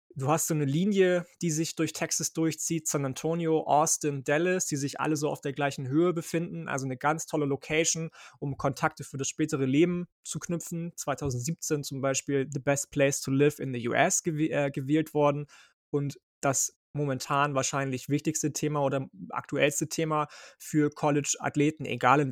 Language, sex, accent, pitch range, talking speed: German, male, German, 135-160 Hz, 170 wpm